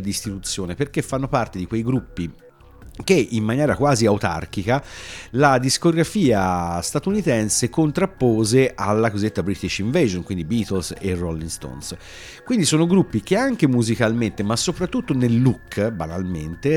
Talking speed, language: 130 wpm, Italian